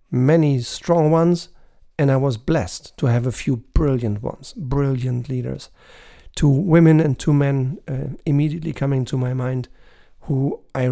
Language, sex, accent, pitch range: German, male, German, 130-160 Hz